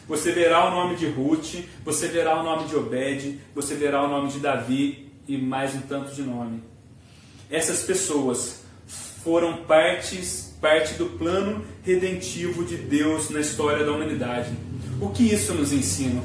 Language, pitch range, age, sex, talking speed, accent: Portuguese, 140-195 Hz, 30-49, male, 160 wpm, Brazilian